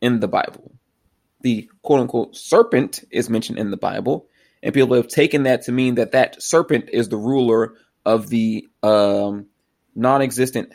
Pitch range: 105-130 Hz